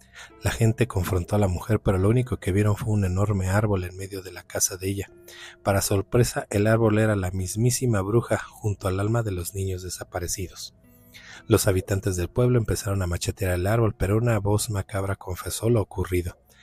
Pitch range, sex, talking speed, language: 95-110 Hz, male, 190 wpm, Spanish